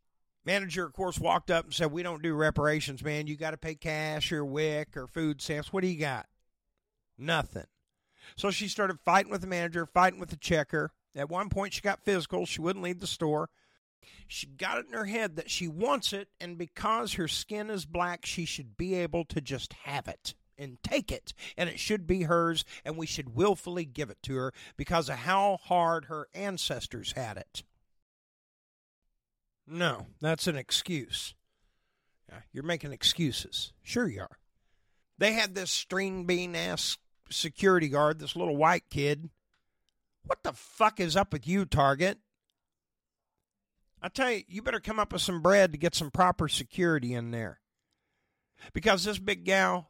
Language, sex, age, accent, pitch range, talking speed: English, male, 50-69, American, 150-185 Hz, 180 wpm